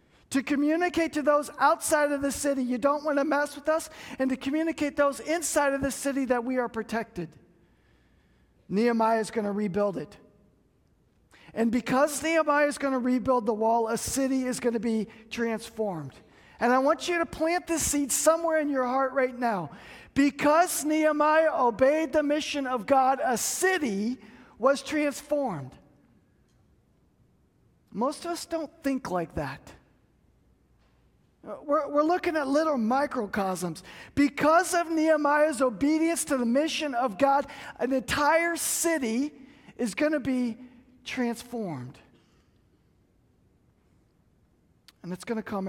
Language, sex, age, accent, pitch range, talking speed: English, male, 50-69, American, 195-290 Hz, 145 wpm